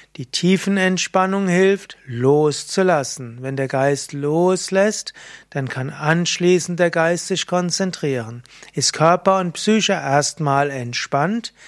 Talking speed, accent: 110 wpm, German